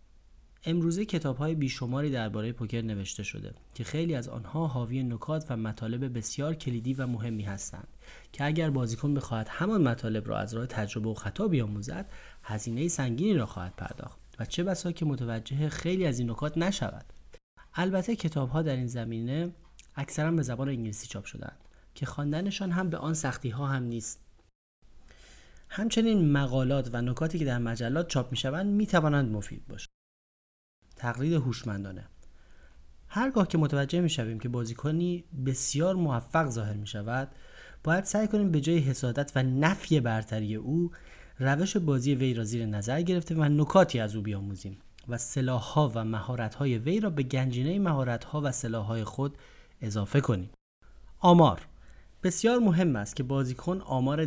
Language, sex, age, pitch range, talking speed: Persian, male, 30-49, 110-160 Hz, 160 wpm